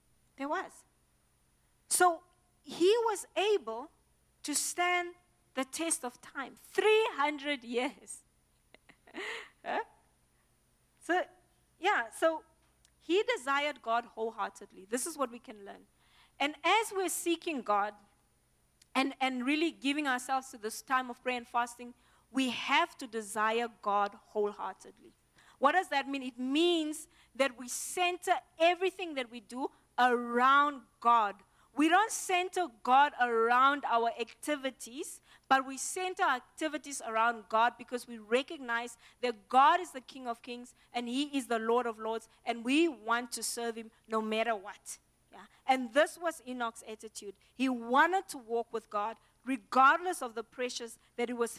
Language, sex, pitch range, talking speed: English, female, 235-325 Hz, 145 wpm